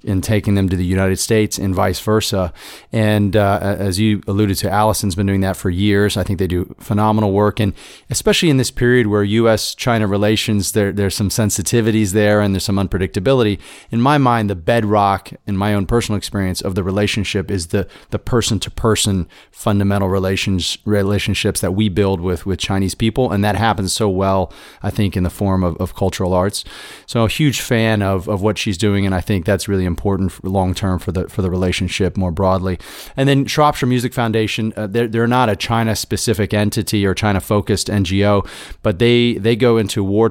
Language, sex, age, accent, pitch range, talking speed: English, male, 30-49, American, 95-110 Hz, 205 wpm